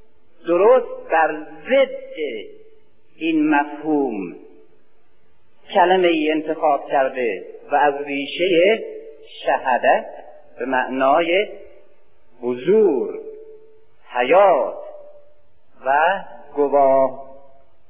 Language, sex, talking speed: Persian, male, 65 wpm